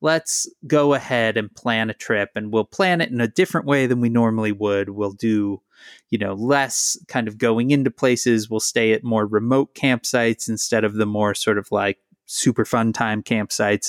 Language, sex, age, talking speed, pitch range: English, male, 20-39, 200 wpm, 100-125 Hz